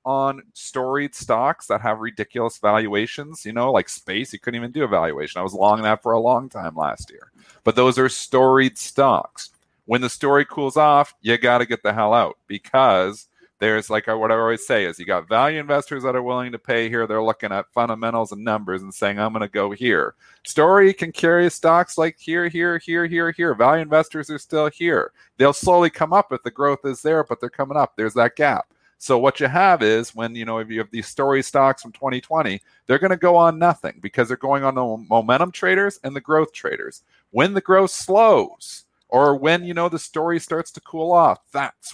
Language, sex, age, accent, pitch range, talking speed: English, male, 40-59, American, 115-160 Hz, 220 wpm